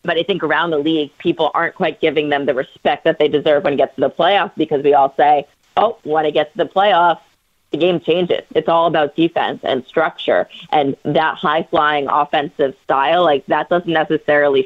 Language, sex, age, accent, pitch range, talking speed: English, female, 30-49, American, 145-170 Hz, 210 wpm